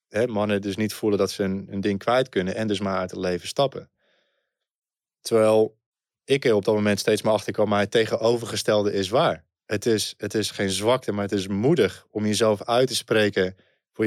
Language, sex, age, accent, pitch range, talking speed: Dutch, male, 20-39, Dutch, 100-115 Hz, 205 wpm